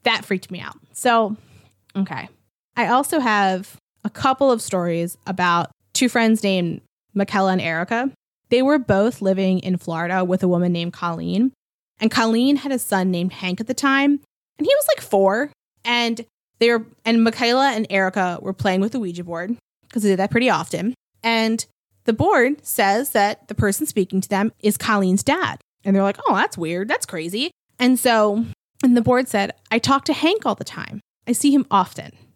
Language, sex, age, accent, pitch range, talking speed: English, female, 20-39, American, 190-240 Hz, 190 wpm